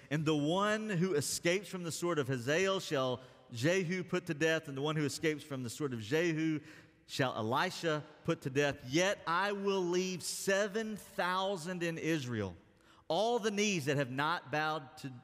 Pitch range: 125-170 Hz